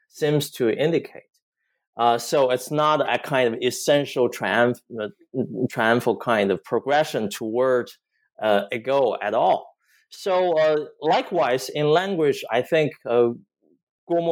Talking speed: 135 wpm